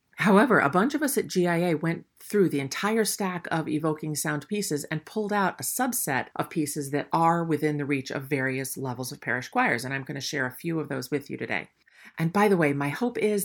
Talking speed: 235 wpm